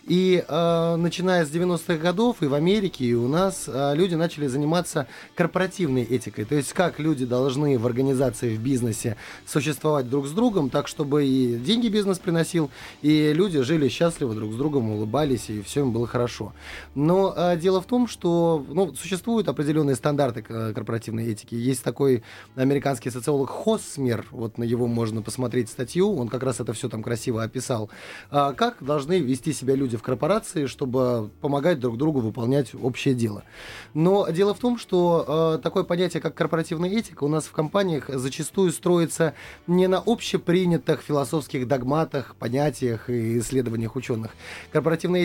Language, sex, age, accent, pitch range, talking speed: Russian, male, 20-39, native, 125-170 Hz, 165 wpm